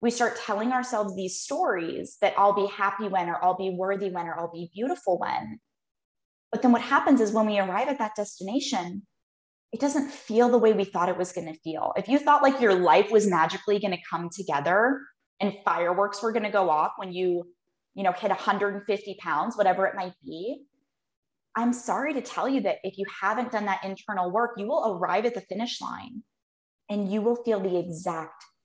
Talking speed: 210 wpm